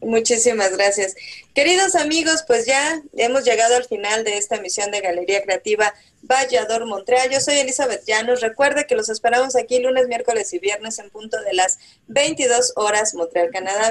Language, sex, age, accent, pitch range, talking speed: Spanish, female, 30-49, Mexican, 205-265 Hz, 170 wpm